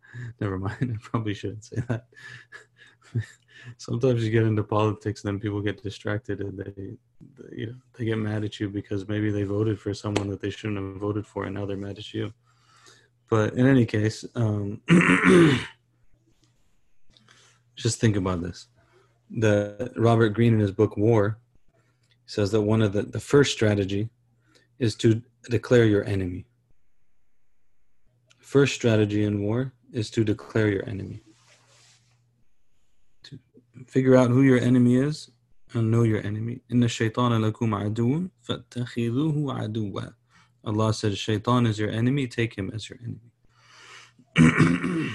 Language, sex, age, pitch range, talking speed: English, male, 30-49, 105-120 Hz, 150 wpm